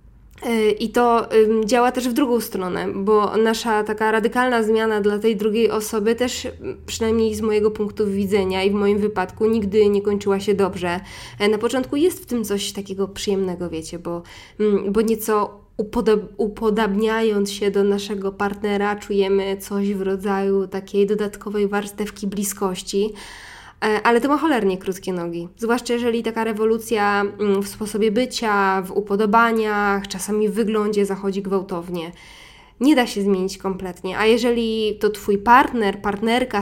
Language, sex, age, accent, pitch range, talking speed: Polish, female, 10-29, native, 200-220 Hz, 145 wpm